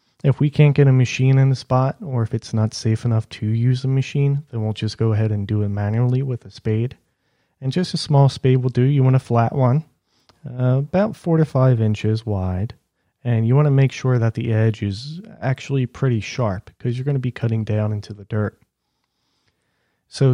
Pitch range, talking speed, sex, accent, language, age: 115-140 Hz, 220 wpm, male, American, English, 30-49